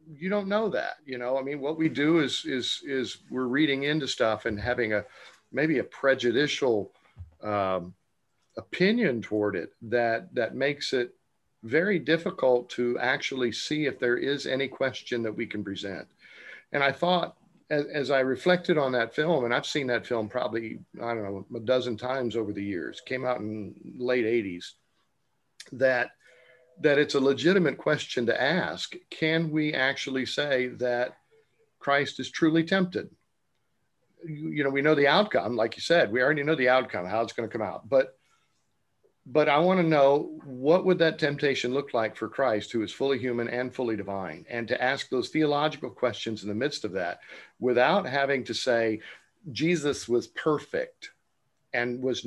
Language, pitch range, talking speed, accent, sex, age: English, 120-155 Hz, 180 wpm, American, male, 50-69